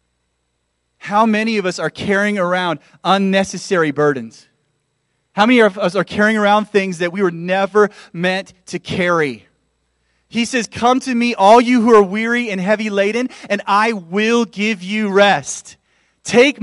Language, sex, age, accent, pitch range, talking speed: English, male, 30-49, American, 125-200 Hz, 160 wpm